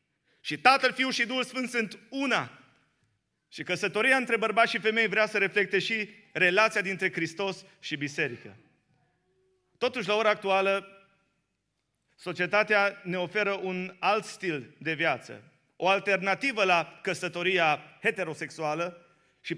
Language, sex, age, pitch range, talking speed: Romanian, male, 30-49, 170-215 Hz, 125 wpm